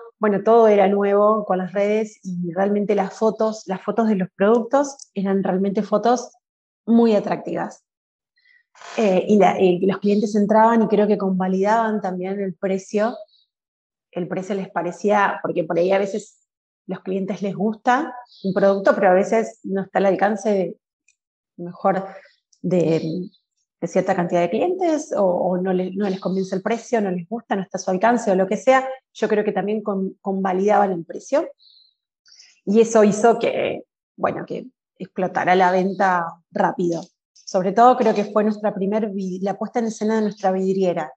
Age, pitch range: 30-49, 190-220 Hz